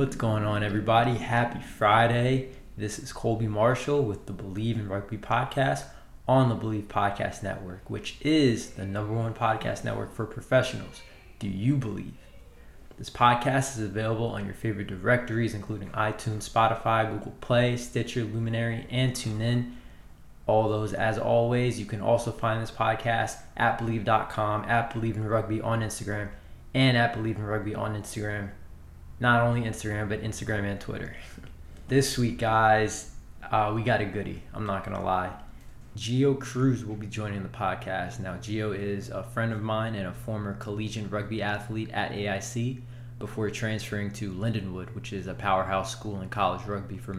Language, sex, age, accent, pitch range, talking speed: English, male, 20-39, American, 105-120 Hz, 165 wpm